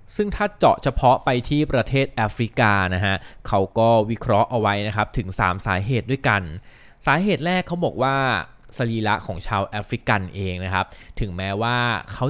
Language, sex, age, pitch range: Thai, male, 20-39, 100-130 Hz